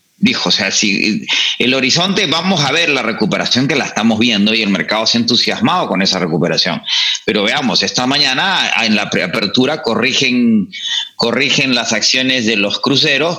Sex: male